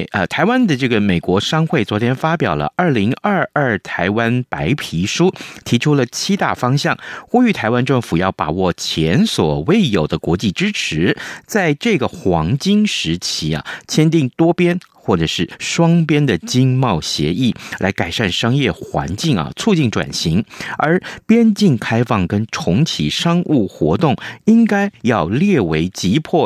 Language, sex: Chinese, male